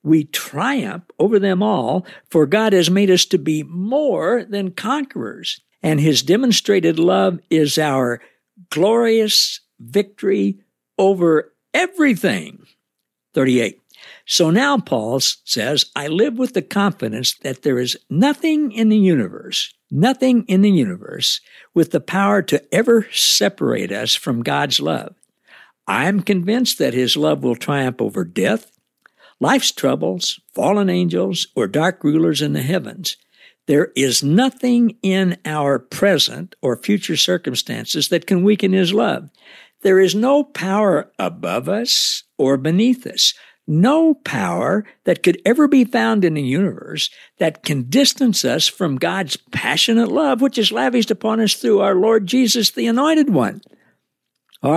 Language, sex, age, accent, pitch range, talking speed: English, male, 60-79, American, 155-225 Hz, 140 wpm